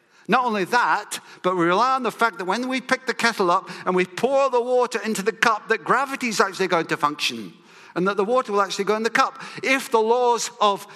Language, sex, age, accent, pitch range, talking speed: English, male, 50-69, British, 135-205 Hz, 245 wpm